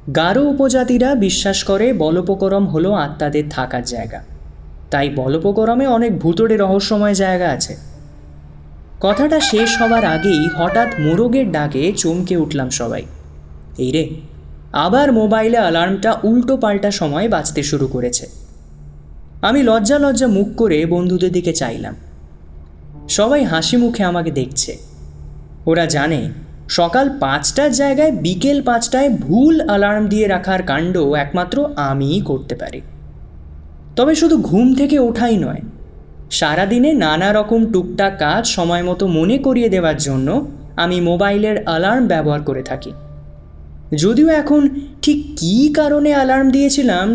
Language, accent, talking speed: Bengali, native, 125 wpm